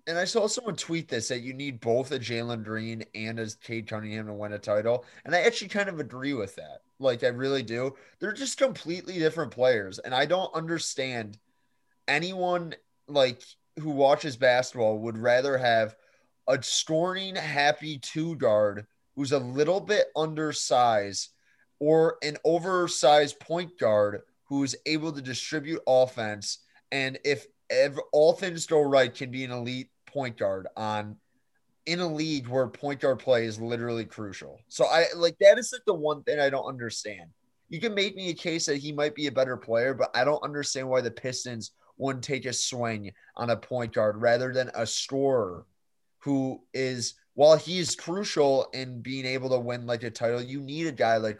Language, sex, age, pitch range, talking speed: English, male, 20-39, 115-155 Hz, 185 wpm